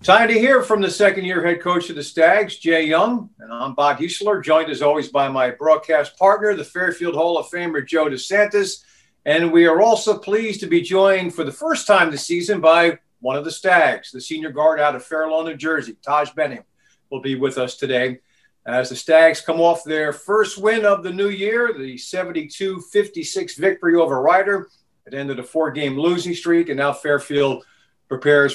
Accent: American